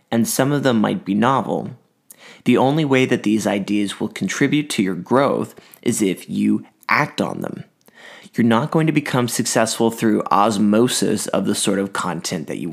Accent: American